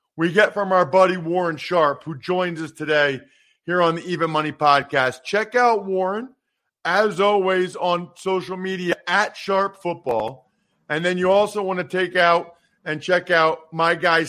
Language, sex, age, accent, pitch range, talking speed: English, male, 50-69, American, 155-190 Hz, 170 wpm